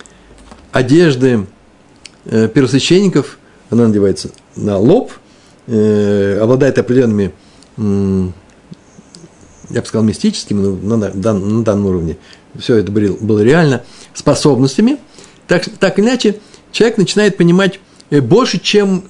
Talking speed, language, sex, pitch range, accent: 90 wpm, Russian, male, 110-170 Hz, native